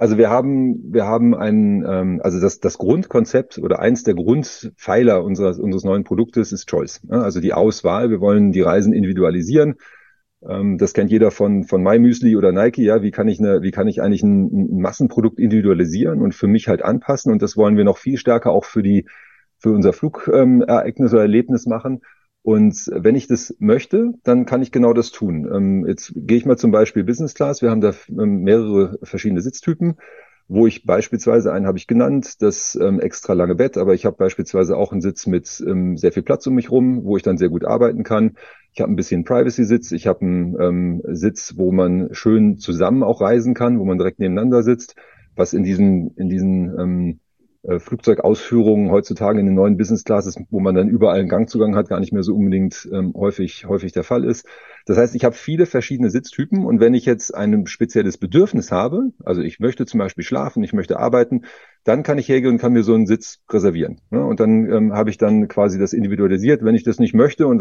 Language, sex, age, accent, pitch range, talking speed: German, male, 40-59, German, 100-125 Hz, 205 wpm